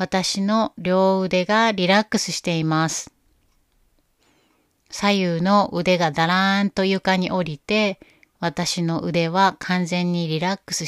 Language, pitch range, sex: Japanese, 170-200 Hz, female